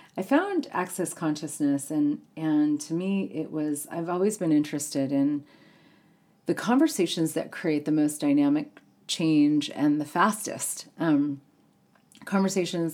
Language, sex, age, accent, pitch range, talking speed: English, female, 40-59, American, 150-185 Hz, 130 wpm